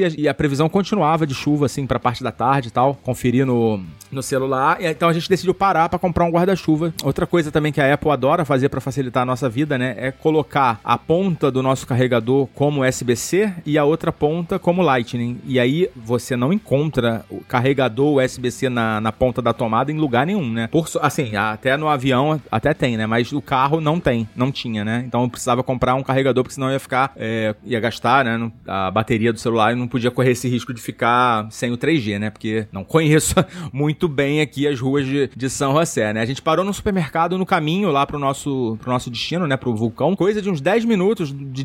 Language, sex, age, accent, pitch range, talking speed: Portuguese, male, 30-49, Brazilian, 125-165 Hz, 220 wpm